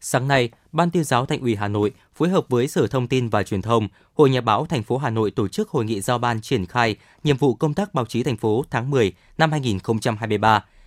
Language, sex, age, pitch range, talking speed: Vietnamese, male, 20-39, 115-150 Hz, 250 wpm